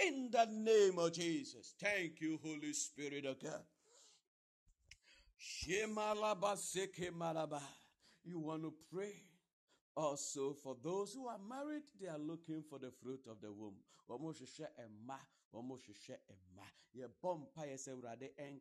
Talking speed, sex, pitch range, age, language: 100 wpm, male, 155-220 Hz, 50-69, English